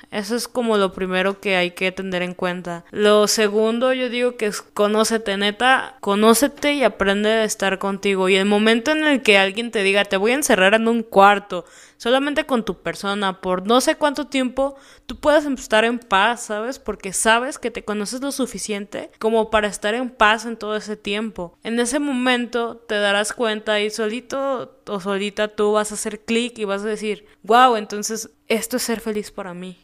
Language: Spanish